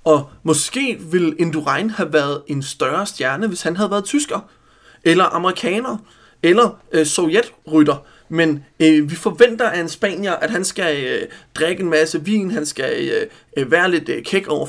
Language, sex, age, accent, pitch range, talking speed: Danish, male, 30-49, native, 155-210 Hz, 170 wpm